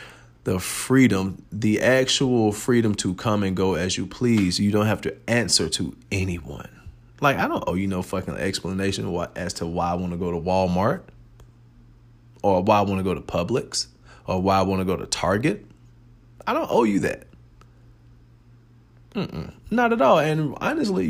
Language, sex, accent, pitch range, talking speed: English, male, American, 95-130 Hz, 180 wpm